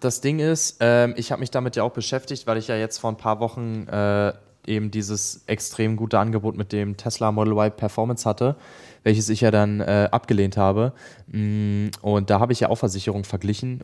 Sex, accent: male, German